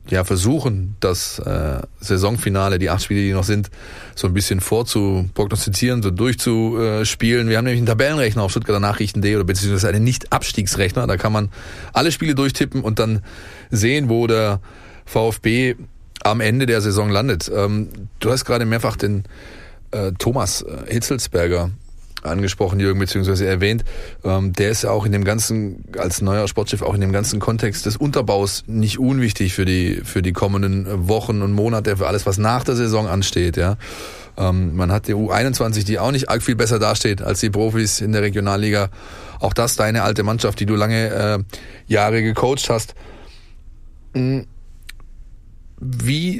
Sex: male